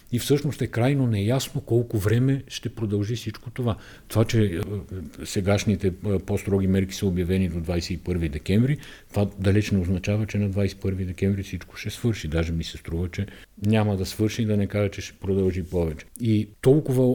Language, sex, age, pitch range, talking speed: Bulgarian, male, 50-69, 95-110 Hz, 175 wpm